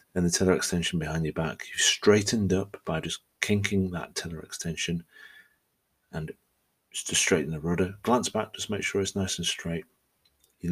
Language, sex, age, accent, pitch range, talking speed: English, male, 30-49, British, 80-95 Hz, 175 wpm